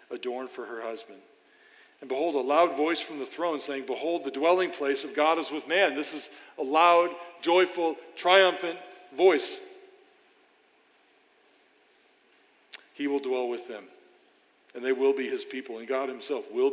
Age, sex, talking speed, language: 50-69, male, 160 wpm, English